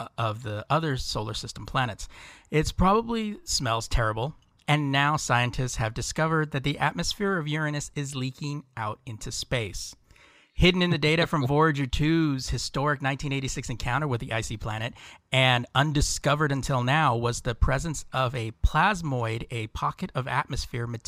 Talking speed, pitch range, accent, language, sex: 150 wpm, 115-145 Hz, American, English, male